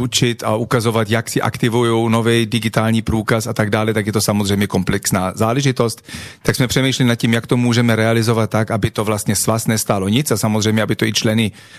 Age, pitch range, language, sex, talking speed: 40-59, 110-125 Hz, Slovak, male, 205 wpm